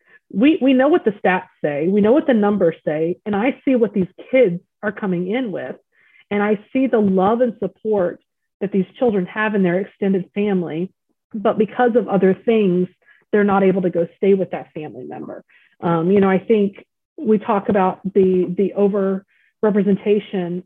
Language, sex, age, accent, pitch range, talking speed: English, female, 30-49, American, 180-210 Hz, 185 wpm